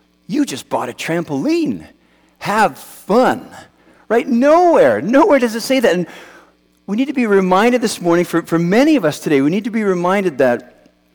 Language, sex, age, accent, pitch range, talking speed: English, male, 50-69, American, 130-205 Hz, 185 wpm